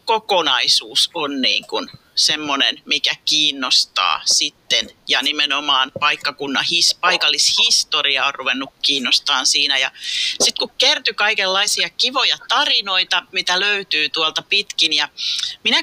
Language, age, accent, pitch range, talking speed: Finnish, 40-59, native, 155-220 Hz, 105 wpm